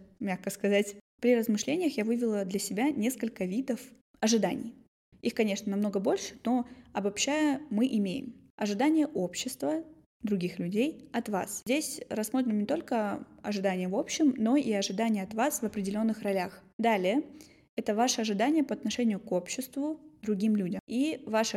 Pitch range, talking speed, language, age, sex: 205-255 Hz, 145 wpm, Russian, 10-29, female